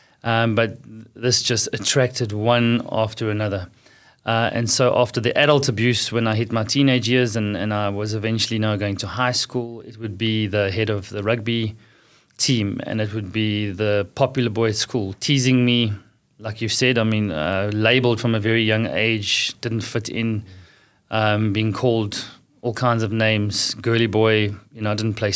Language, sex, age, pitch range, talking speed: English, male, 30-49, 105-120 Hz, 190 wpm